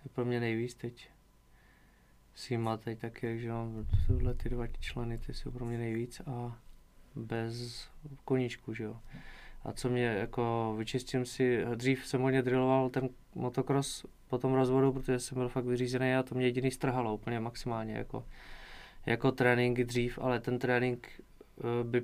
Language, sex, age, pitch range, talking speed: Czech, male, 20-39, 115-125 Hz, 160 wpm